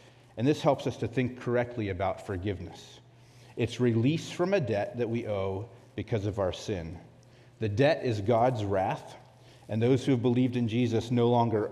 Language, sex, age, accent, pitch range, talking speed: English, male, 40-59, American, 110-125 Hz, 180 wpm